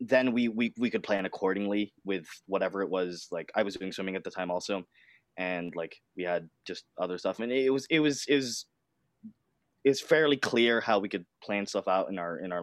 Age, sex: 20-39, male